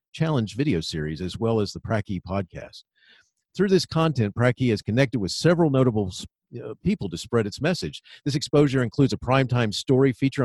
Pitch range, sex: 100-135 Hz, male